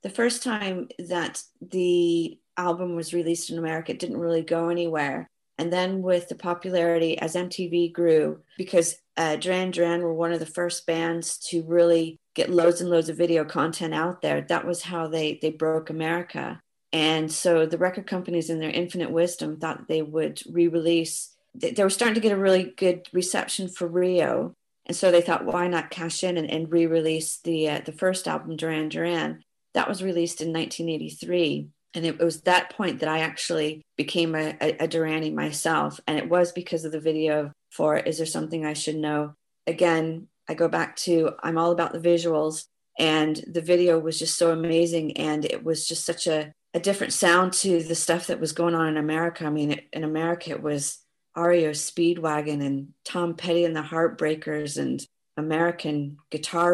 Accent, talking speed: American, 190 wpm